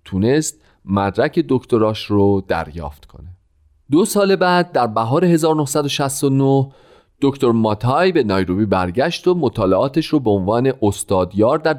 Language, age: Persian, 40-59